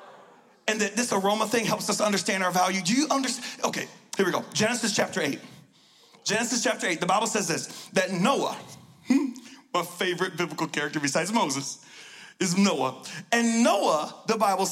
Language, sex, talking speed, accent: English, male, 165 wpm, American